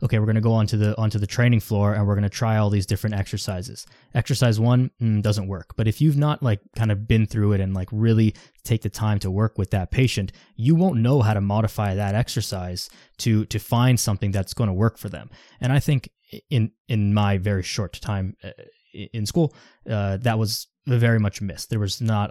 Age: 20-39